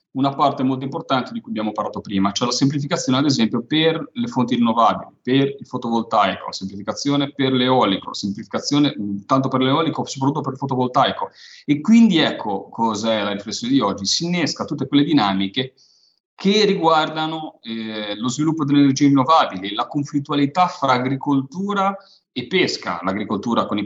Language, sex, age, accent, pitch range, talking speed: Italian, male, 30-49, native, 100-145 Hz, 165 wpm